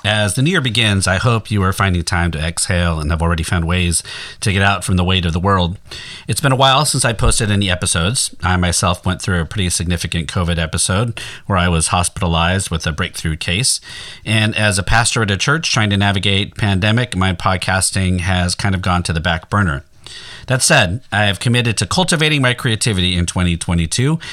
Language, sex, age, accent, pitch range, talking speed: English, male, 40-59, American, 90-115 Hz, 210 wpm